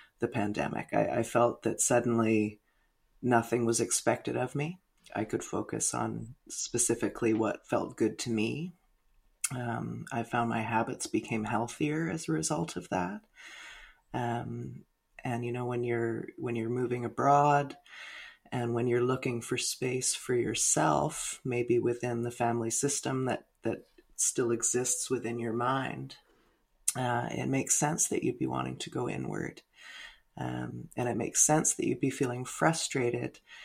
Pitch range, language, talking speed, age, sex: 115-125 Hz, English, 150 wpm, 30-49, female